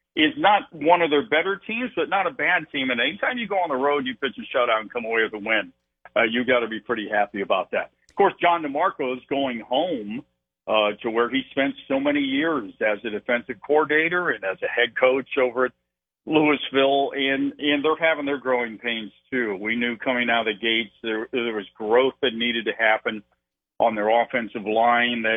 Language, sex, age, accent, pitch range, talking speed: English, male, 50-69, American, 115-145 Hz, 220 wpm